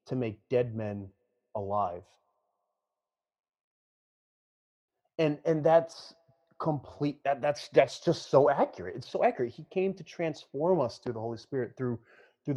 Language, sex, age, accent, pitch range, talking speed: English, male, 30-49, American, 105-135 Hz, 140 wpm